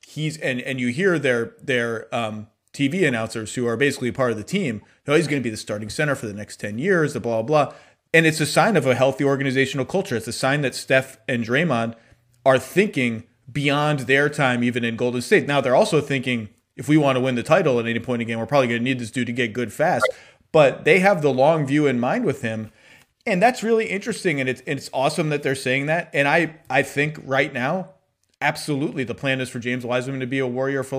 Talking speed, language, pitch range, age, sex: 240 wpm, English, 120-150 Hz, 30-49, male